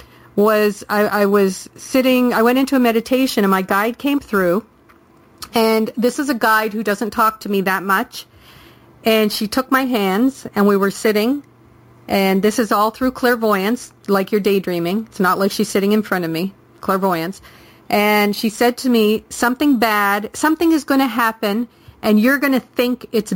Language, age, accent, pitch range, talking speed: English, 40-59, American, 195-235 Hz, 190 wpm